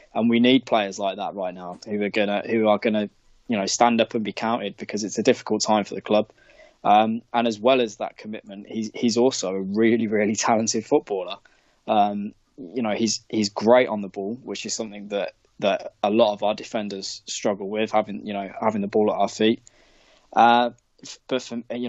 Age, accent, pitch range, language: 10-29, British, 100-115 Hz, English